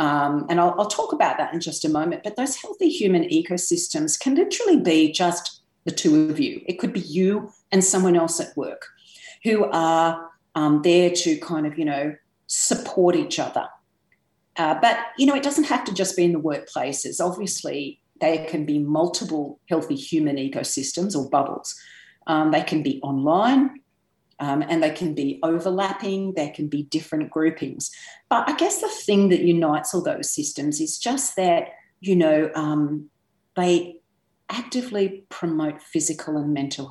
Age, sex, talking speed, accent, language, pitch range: 40-59, female, 170 wpm, Australian, English, 155-215 Hz